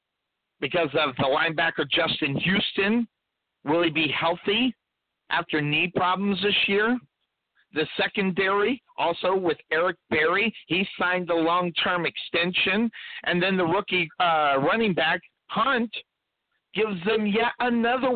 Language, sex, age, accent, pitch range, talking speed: English, male, 50-69, American, 175-225 Hz, 130 wpm